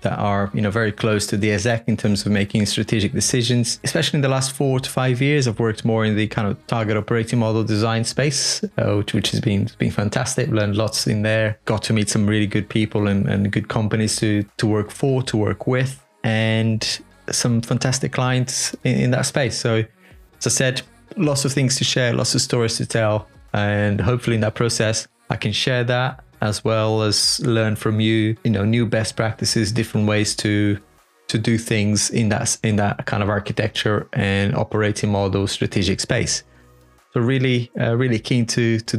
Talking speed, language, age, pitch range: 200 wpm, English, 20-39, 105-125 Hz